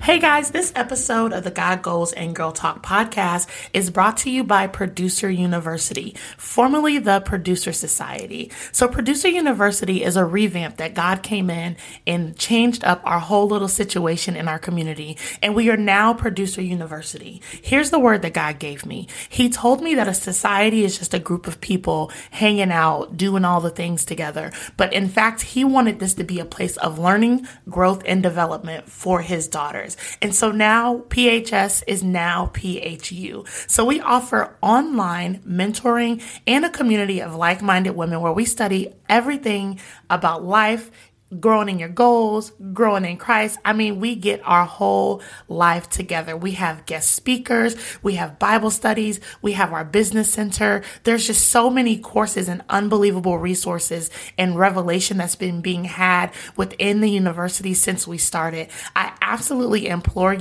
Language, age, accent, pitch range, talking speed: English, 20-39, American, 175-220 Hz, 165 wpm